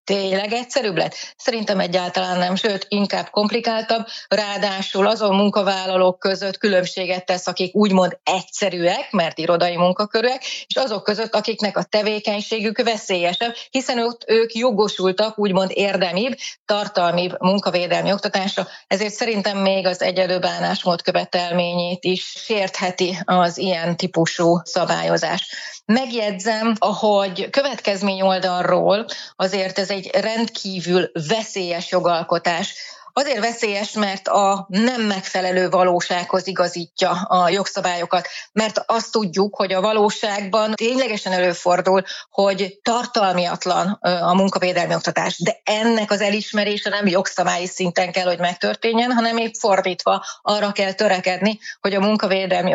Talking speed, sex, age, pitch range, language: 115 wpm, female, 30-49, 180-210 Hz, Hungarian